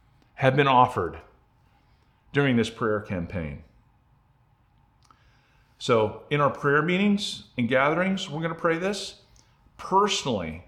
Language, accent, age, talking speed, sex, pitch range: English, American, 40-59, 105 wpm, male, 115-140 Hz